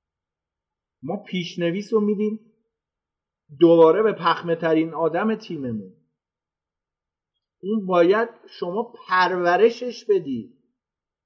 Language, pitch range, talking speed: Persian, 140-210 Hz, 80 wpm